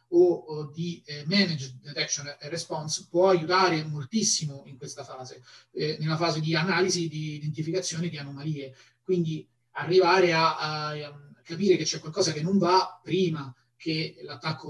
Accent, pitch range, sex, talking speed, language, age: native, 145-170 Hz, male, 135 wpm, Italian, 30-49